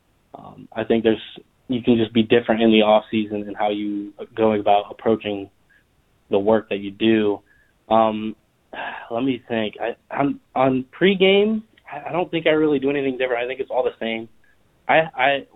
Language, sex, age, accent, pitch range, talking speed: English, male, 20-39, American, 105-125 Hz, 190 wpm